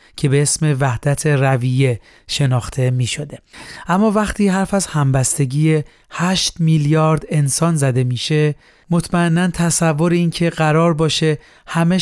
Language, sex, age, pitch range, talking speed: Persian, male, 30-49, 140-165 Hz, 120 wpm